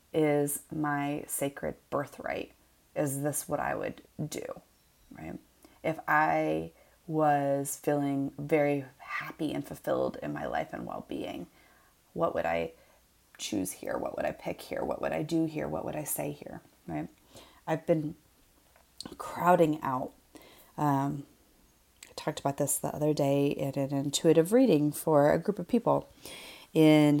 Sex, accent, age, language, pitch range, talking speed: female, American, 30-49, English, 140-155 Hz, 150 wpm